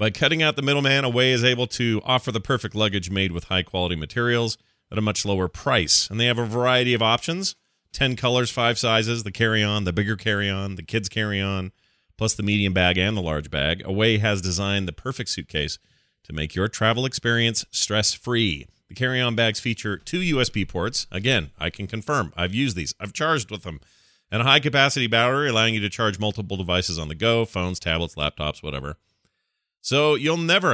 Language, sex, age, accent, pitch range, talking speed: English, male, 40-59, American, 95-125 Hz, 195 wpm